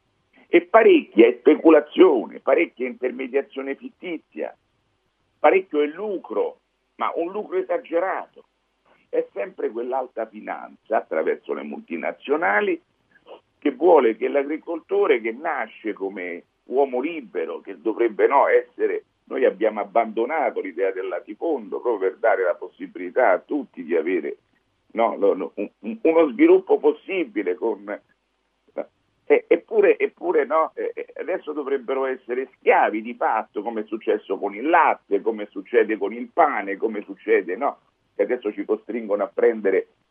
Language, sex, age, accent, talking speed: Italian, male, 50-69, native, 130 wpm